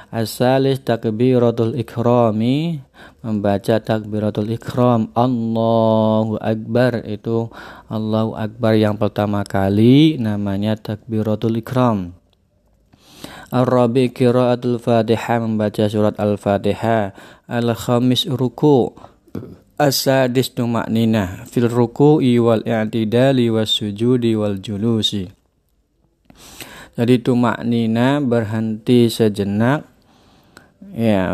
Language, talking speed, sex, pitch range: Indonesian, 75 wpm, male, 110-125 Hz